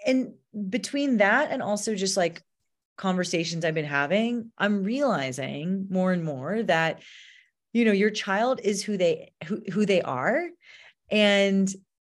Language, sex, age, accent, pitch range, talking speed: English, female, 30-49, American, 175-225 Hz, 145 wpm